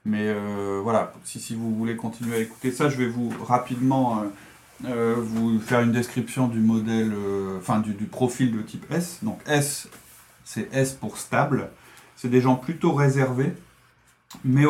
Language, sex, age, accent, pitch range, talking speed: French, male, 30-49, French, 110-135 Hz, 175 wpm